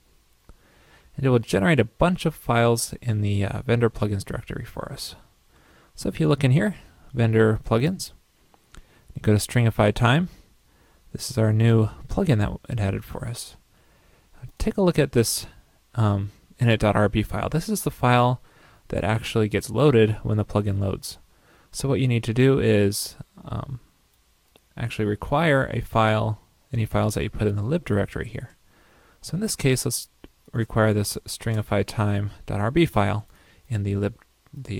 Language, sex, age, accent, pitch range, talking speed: English, male, 30-49, American, 105-130 Hz, 160 wpm